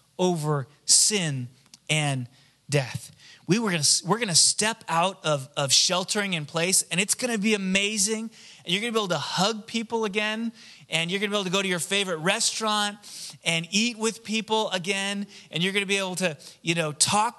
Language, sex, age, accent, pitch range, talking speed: English, male, 30-49, American, 155-210 Hz, 205 wpm